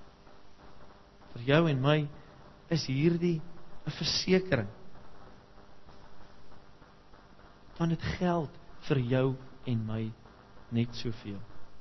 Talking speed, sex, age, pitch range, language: 80 wpm, male, 40-59, 115-170 Hz, English